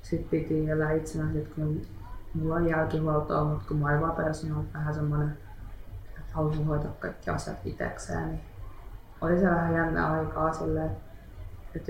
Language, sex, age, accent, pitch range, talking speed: Finnish, female, 20-39, native, 90-155 Hz, 150 wpm